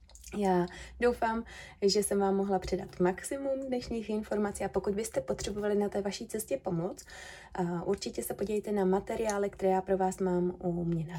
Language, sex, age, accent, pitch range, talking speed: Czech, female, 20-39, native, 180-220 Hz, 170 wpm